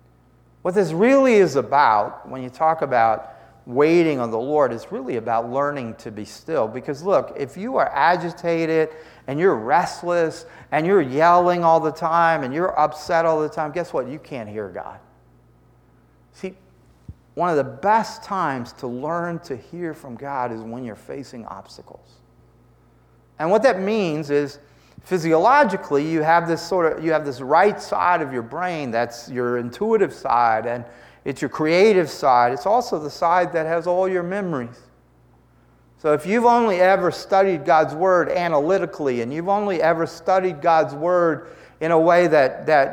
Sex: male